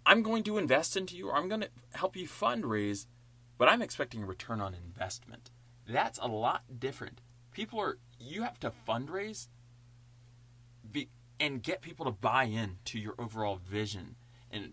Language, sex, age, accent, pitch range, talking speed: English, male, 20-39, American, 110-125 Hz, 170 wpm